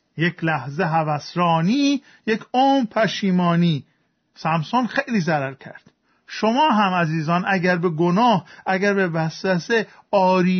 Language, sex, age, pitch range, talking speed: Persian, male, 50-69, 170-210 Hz, 115 wpm